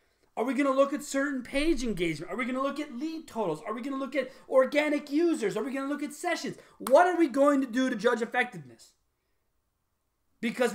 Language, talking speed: English, 235 wpm